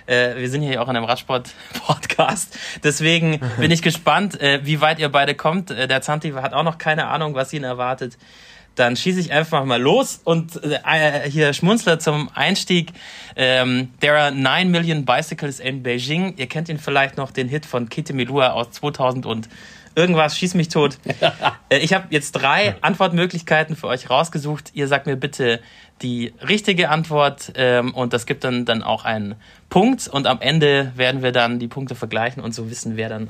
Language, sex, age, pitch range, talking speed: German, male, 30-49, 125-160 Hz, 190 wpm